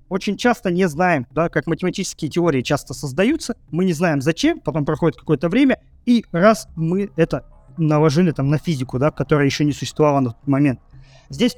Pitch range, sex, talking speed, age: 140-185 Hz, male, 180 wpm, 20-39